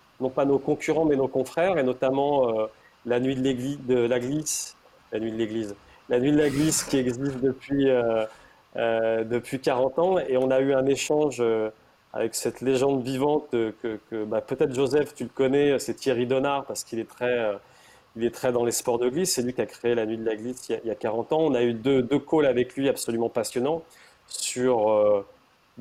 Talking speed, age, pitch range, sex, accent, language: 225 wpm, 30-49, 120-150 Hz, male, French, French